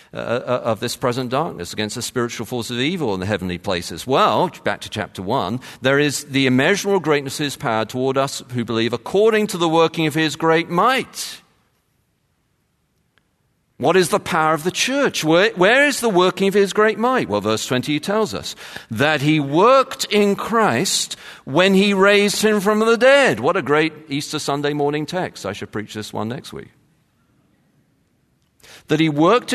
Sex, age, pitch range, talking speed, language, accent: male, 50-69, 115-195 Hz, 185 wpm, English, British